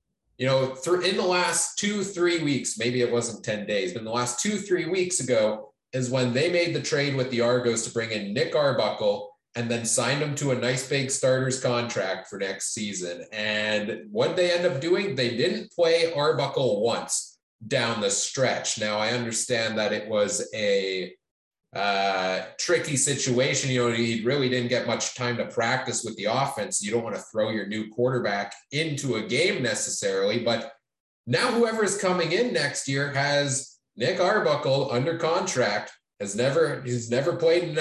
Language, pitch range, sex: English, 120-165 Hz, male